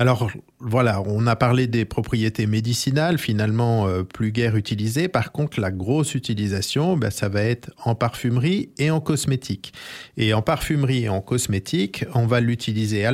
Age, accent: 50-69, French